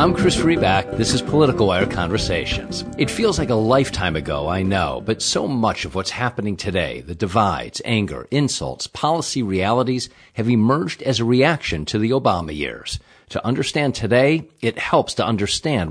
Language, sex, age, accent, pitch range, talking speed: English, male, 50-69, American, 100-140 Hz, 170 wpm